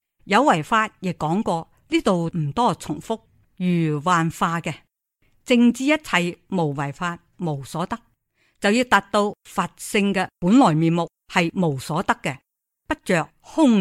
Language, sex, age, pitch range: Chinese, female, 50-69, 155-225 Hz